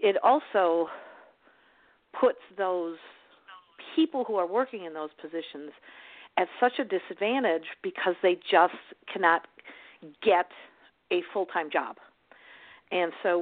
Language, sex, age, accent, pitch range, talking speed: English, female, 50-69, American, 165-210 Hz, 110 wpm